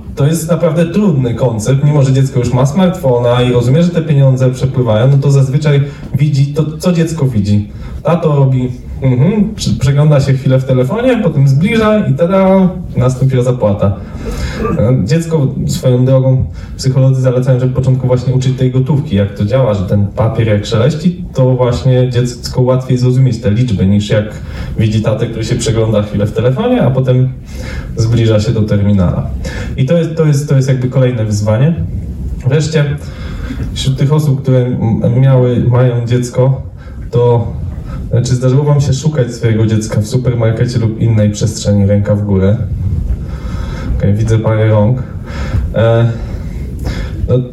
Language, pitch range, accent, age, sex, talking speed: Polish, 105-135 Hz, native, 20-39, male, 155 wpm